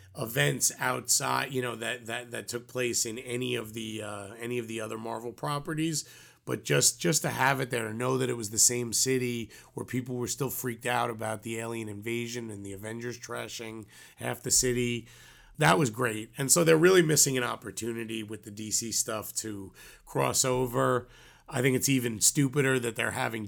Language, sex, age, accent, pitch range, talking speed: English, male, 30-49, American, 110-125 Hz, 195 wpm